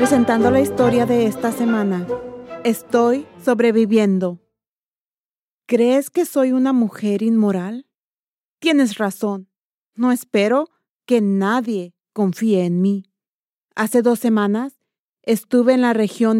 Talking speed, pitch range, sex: 110 wpm, 205-245 Hz, female